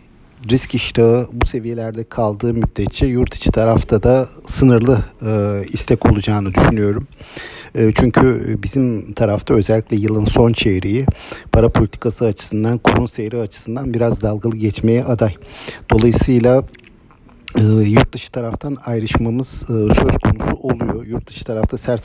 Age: 50-69